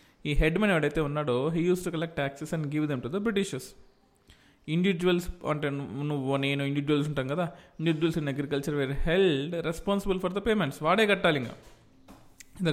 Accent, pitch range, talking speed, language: native, 140-170 Hz, 170 wpm, Telugu